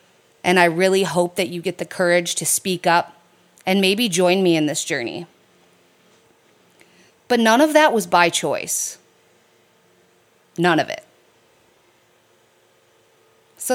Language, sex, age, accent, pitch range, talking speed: English, female, 30-49, American, 160-195 Hz, 130 wpm